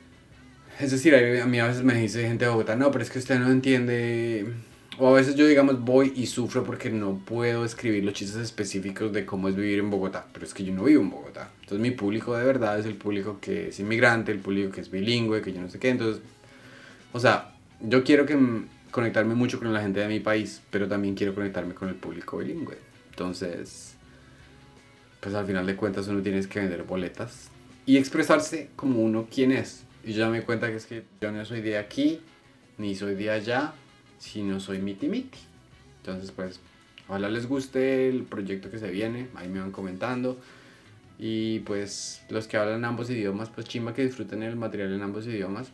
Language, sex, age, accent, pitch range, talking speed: Spanish, male, 30-49, Colombian, 100-125 Hz, 205 wpm